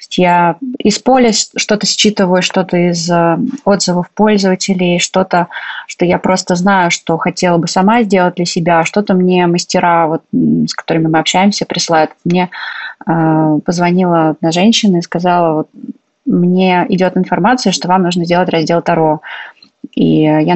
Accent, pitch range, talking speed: native, 170-195 Hz, 145 wpm